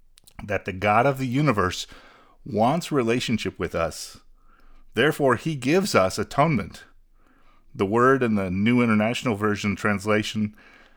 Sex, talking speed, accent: male, 125 wpm, American